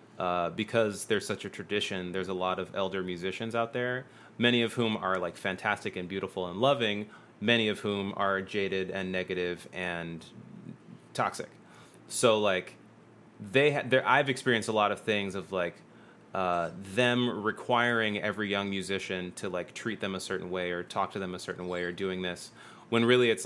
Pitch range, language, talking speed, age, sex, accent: 95-120 Hz, English, 185 wpm, 30-49, male, American